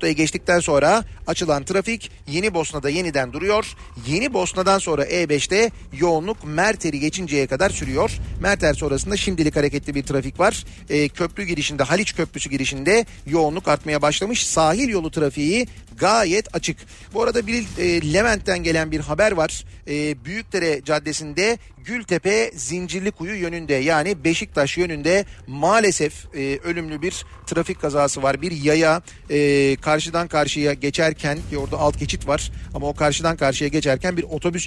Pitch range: 145-180 Hz